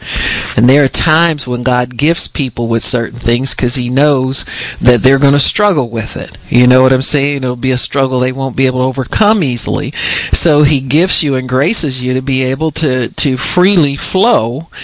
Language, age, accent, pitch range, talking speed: English, 50-69, American, 120-145 Hz, 205 wpm